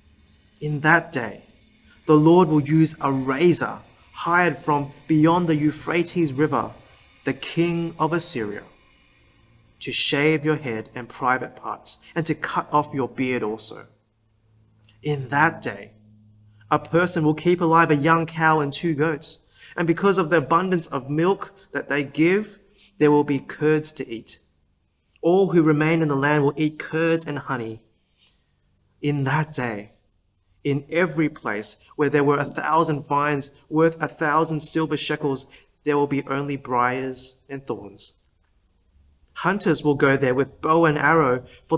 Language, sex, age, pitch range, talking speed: English, male, 30-49, 110-160 Hz, 155 wpm